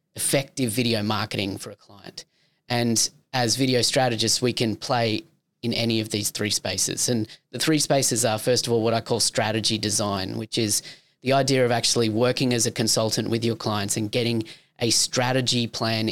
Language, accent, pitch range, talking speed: English, Australian, 110-135 Hz, 185 wpm